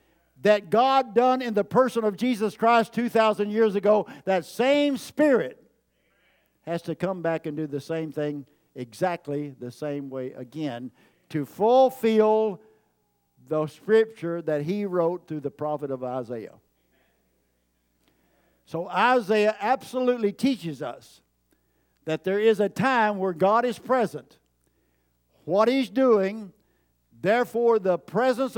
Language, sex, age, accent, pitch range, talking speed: English, male, 60-79, American, 145-220 Hz, 130 wpm